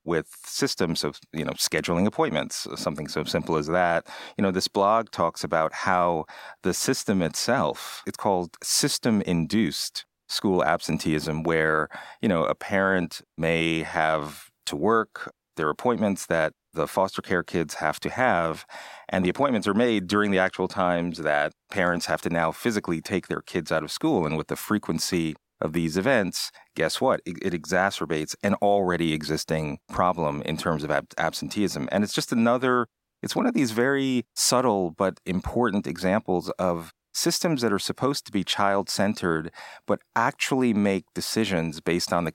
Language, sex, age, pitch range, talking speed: English, male, 30-49, 80-105 Hz, 165 wpm